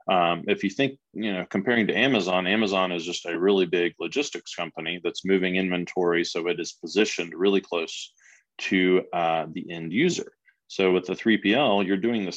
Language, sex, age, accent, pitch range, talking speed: English, male, 20-39, American, 85-100 Hz, 185 wpm